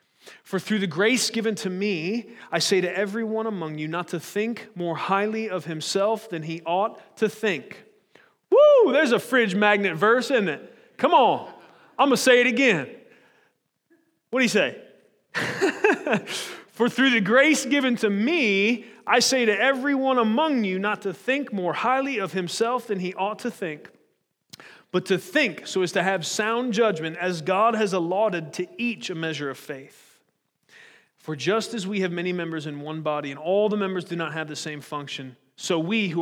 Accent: American